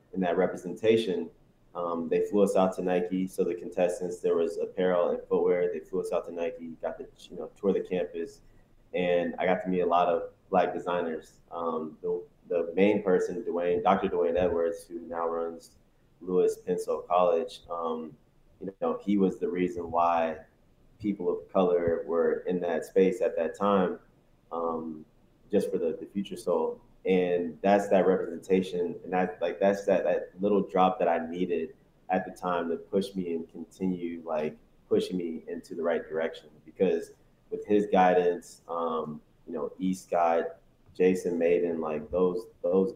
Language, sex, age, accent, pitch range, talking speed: English, male, 20-39, American, 85-115 Hz, 175 wpm